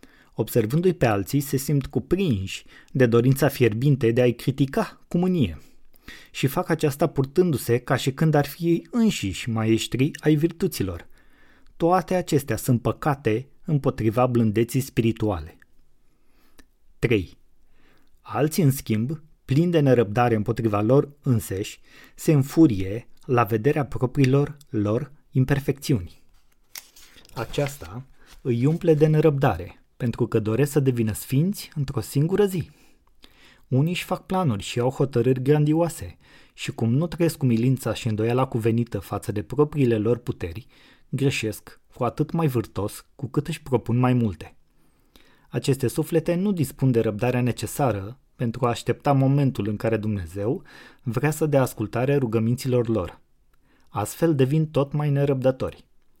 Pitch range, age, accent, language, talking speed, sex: 115-150 Hz, 30-49, native, Romanian, 130 wpm, male